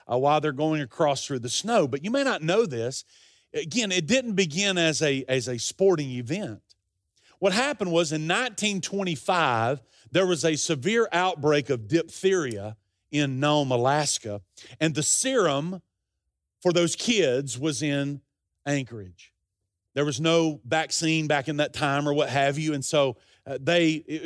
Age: 40-59